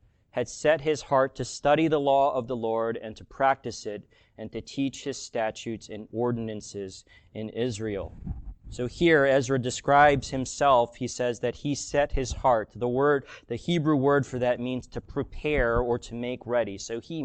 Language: English